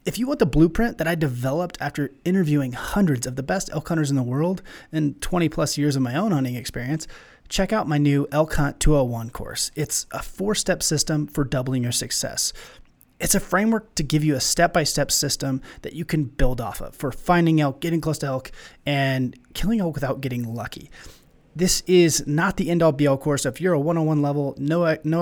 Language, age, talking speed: English, 20-39, 205 wpm